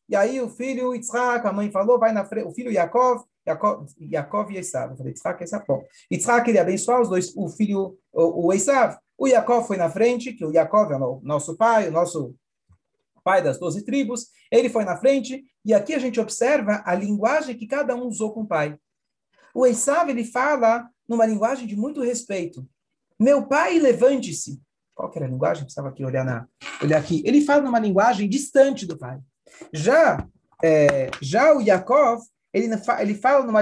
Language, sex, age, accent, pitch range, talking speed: Portuguese, male, 40-59, Brazilian, 170-250 Hz, 185 wpm